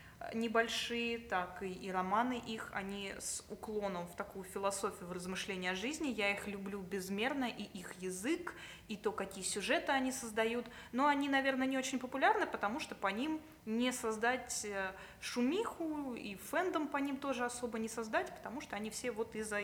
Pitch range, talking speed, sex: 205-245 Hz, 170 wpm, female